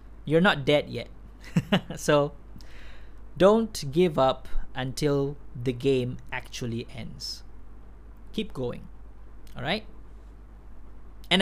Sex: male